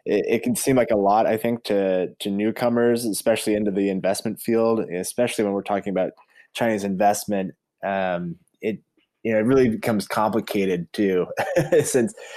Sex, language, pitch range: male, English, 100-125 Hz